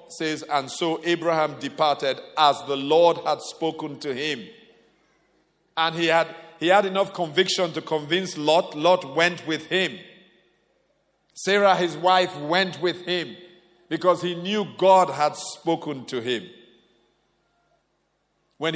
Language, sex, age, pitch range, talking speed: English, male, 50-69, 145-185 Hz, 130 wpm